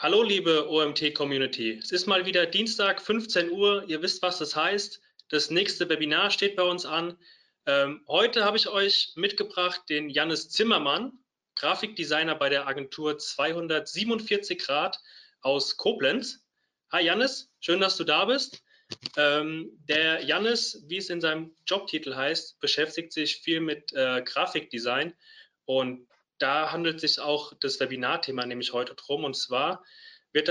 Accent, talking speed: German, 145 wpm